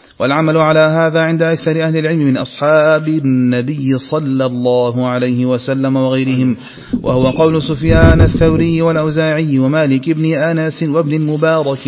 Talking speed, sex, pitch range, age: 125 wpm, male, 135-165 Hz, 40-59